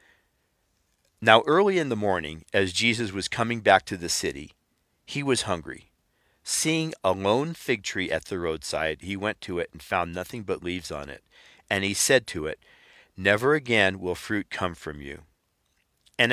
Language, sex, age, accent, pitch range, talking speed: English, male, 50-69, American, 90-120 Hz, 175 wpm